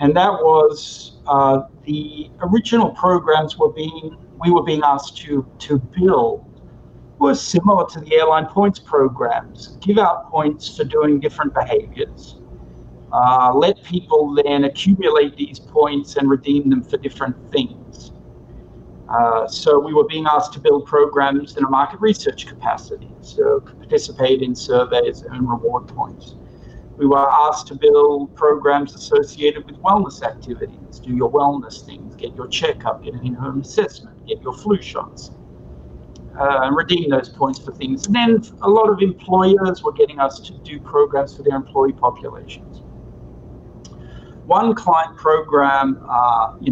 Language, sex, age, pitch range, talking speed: English, male, 50-69, 135-195 Hz, 150 wpm